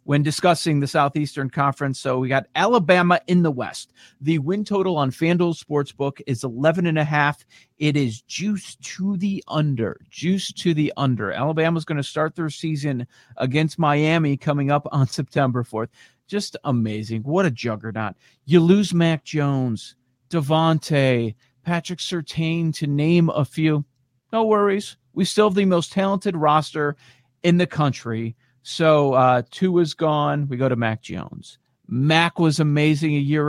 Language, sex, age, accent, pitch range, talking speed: English, male, 40-59, American, 130-165 Hz, 155 wpm